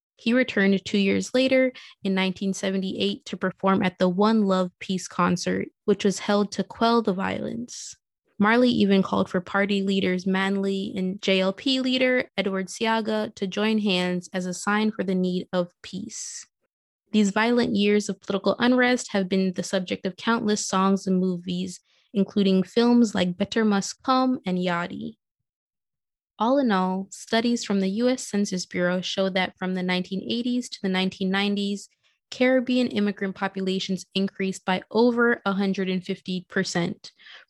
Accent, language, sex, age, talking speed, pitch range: American, English, female, 20-39, 145 wpm, 185-220 Hz